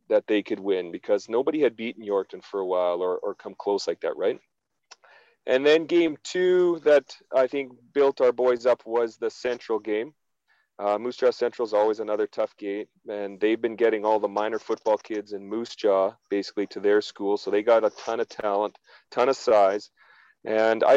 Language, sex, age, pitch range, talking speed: English, male, 40-59, 105-150 Hz, 205 wpm